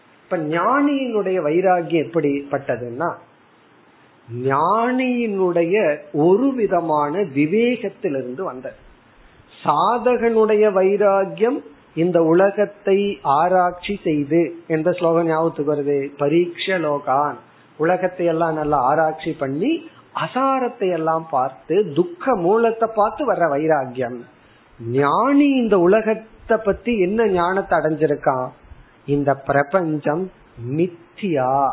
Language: Tamil